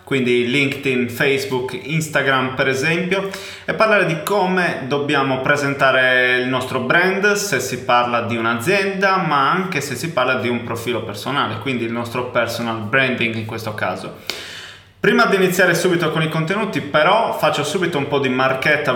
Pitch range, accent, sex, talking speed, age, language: 120-150 Hz, native, male, 160 wpm, 20-39, Italian